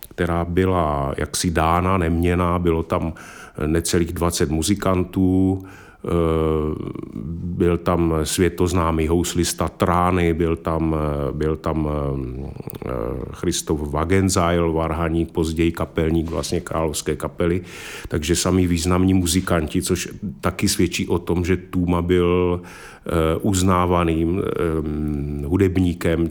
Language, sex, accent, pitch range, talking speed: Czech, male, native, 80-90 Hz, 95 wpm